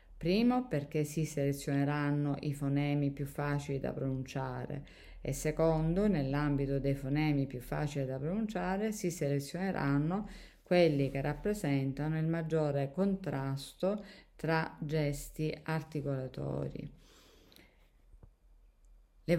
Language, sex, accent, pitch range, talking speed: Italian, female, native, 140-165 Hz, 95 wpm